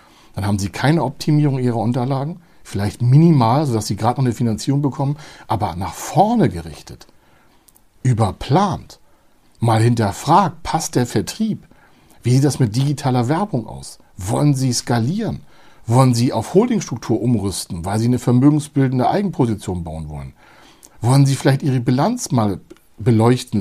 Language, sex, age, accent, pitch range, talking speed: German, male, 60-79, German, 105-140 Hz, 140 wpm